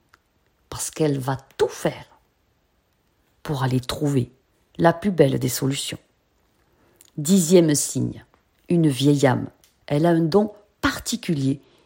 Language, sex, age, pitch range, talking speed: French, female, 40-59, 140-200 Hz, 115 wpm